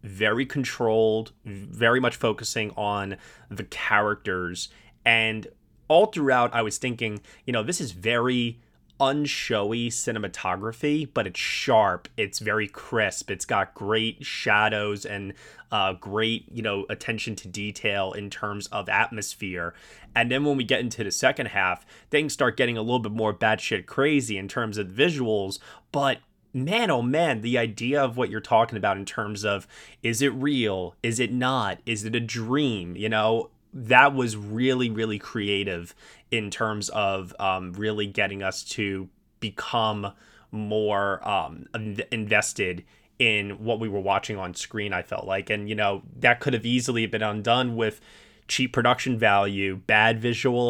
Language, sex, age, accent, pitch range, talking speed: English, male, 20-39, American, 100-120 Hz, 155 wpm